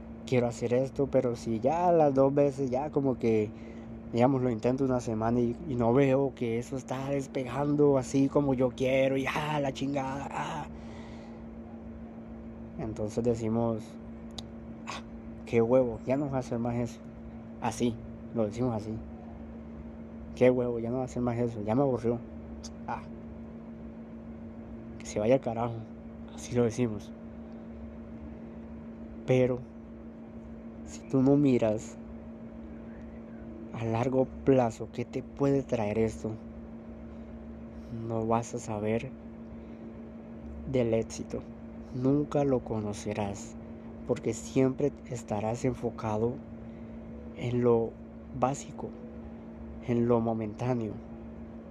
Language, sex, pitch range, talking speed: Spanish, male, 110-125 Hz, 120 wpm